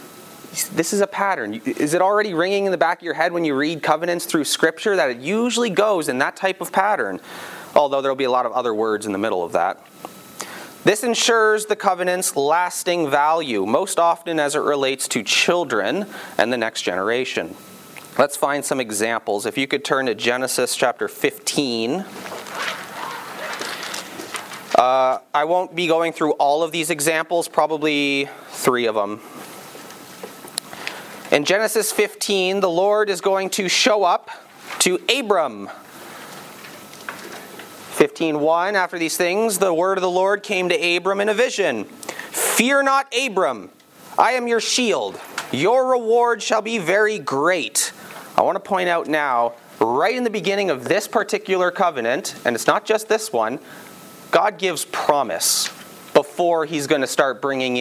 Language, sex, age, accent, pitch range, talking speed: English, male, 30-49, American, 145-205 Hz, 160 wpm